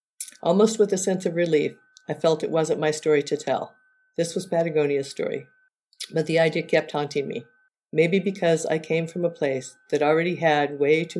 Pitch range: 150-180 Hz